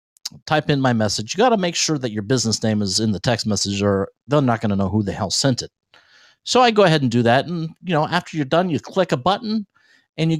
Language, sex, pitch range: English, male, 120-180 Hz